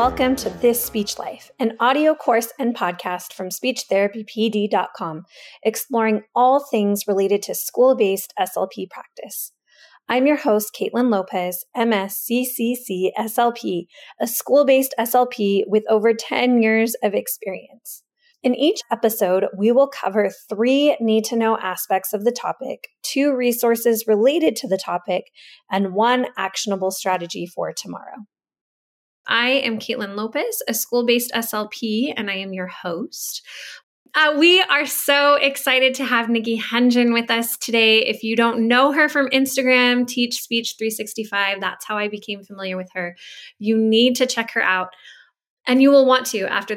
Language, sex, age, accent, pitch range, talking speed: English, female, 20-39, American, 205-260 Hz, 145 wpm